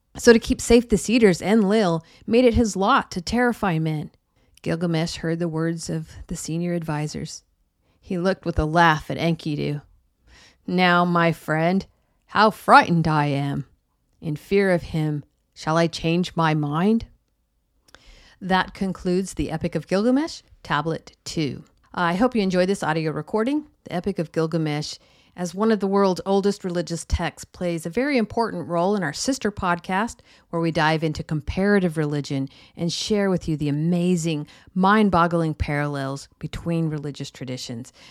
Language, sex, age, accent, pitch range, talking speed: English, female, 50-69, American, 155-195 Hz, 155 wpm